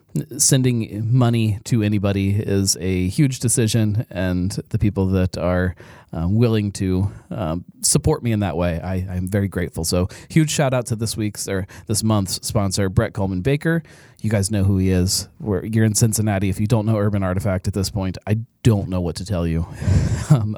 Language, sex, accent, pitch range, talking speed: English, male, American, 95-120 Hz, 190 wpm